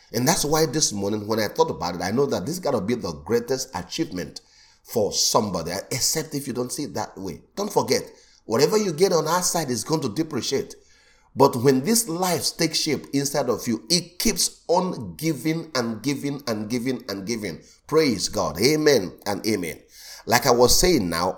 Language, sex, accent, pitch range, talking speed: English, male, Nigerian, 110-155 Hz, 200 wpm